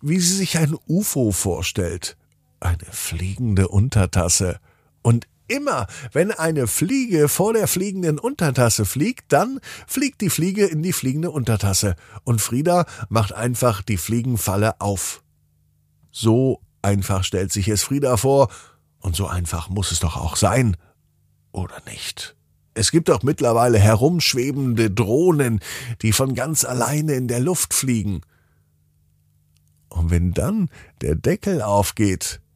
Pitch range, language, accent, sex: 90-140 Hz, German, German, male